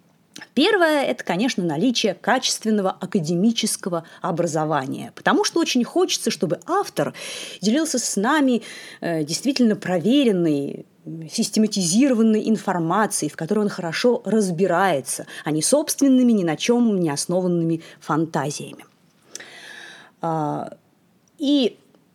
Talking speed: 95 wpm